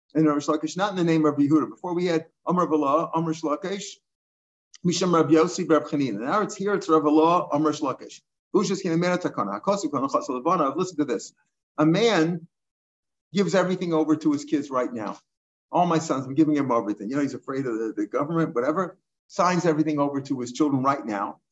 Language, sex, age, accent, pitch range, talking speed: English, male, 50-69, American, 145-185 Hz, 190 wpm